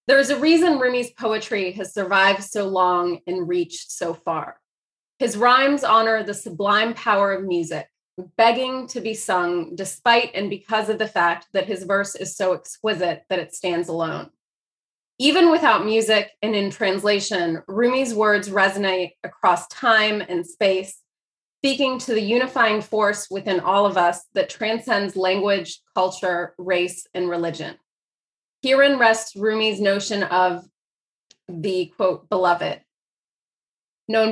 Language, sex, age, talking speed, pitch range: English, female, 20-39, 140 wpm, 185-225 Hz